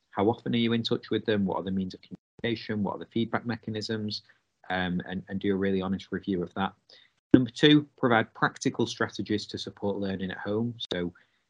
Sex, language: male, English